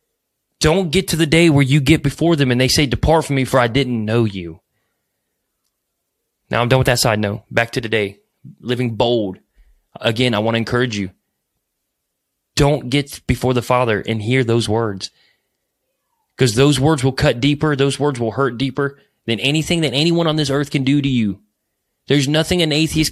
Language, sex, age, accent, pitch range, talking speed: English, male, 20-39, American, 120-165 Hz, 190 wpm